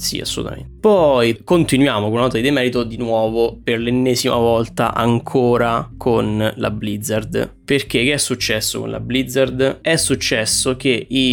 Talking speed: 155 wpm